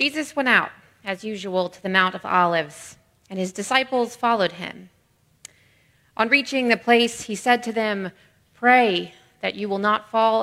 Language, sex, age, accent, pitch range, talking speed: English, female, 30-49, American, 180-220 Hz, 165 wpm